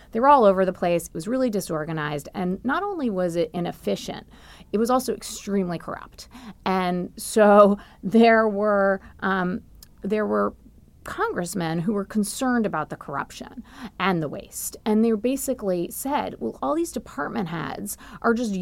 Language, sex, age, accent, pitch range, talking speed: English, female, 30-49, American, 175-230 Hz, 160 wpm